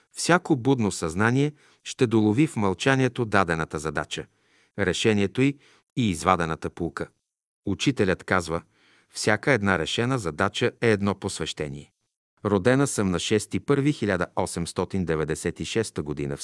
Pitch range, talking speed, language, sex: 90-120 Hz, 105 wpm, Bulgarian, male